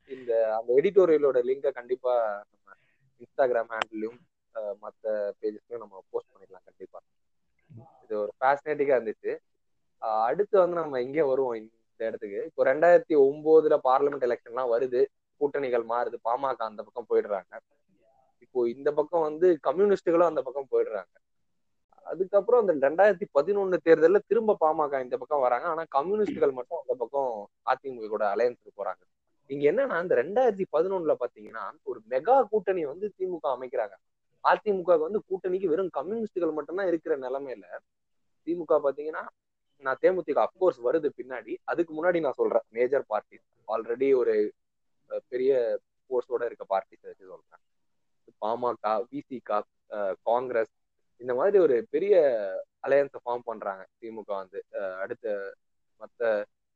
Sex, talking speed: male, 125 wpm